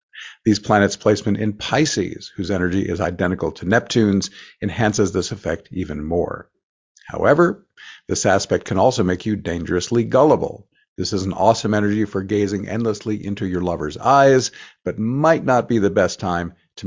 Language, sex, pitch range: English, male, 95-115 Hz